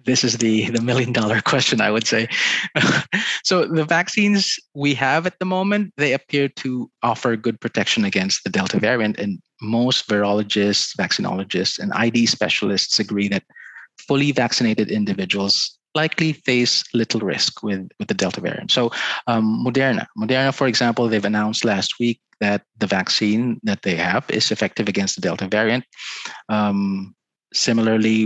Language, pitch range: English, 105-130 Hz